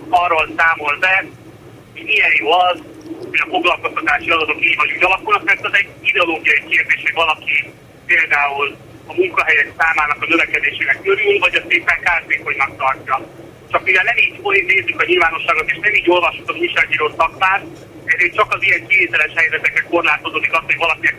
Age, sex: 30-49, male